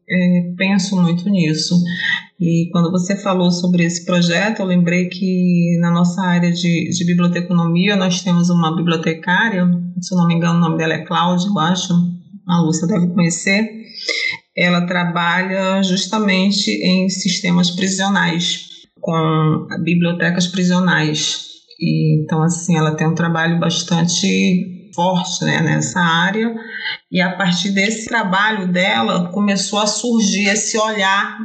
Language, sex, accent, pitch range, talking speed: Portuguese, female, Brazilian, 175-195 Hz, 130 wpm